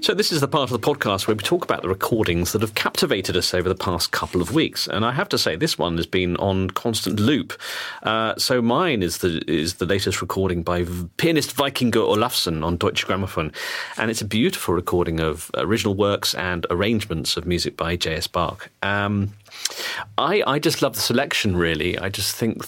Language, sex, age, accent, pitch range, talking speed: English, male, 40-59, British, 90-110 Hz, 205 wpm